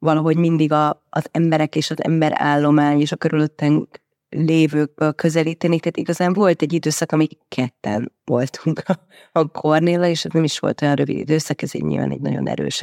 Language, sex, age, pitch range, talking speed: Hungarian, female, 30-49, 140-160 Hz, 170 wpm